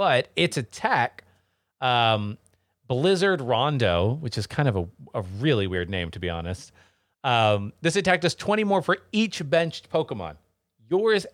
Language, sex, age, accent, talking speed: English, male, 30-49, American, 155 wpm